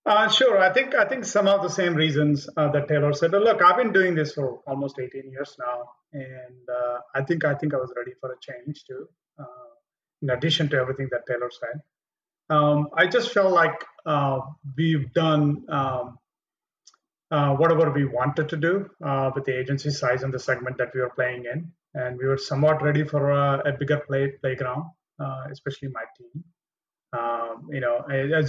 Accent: Indian